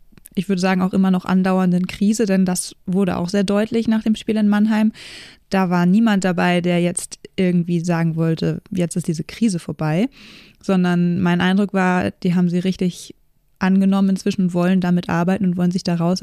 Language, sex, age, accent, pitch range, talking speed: German, female, 20-39, German, 175-200 Hz, 185 wpm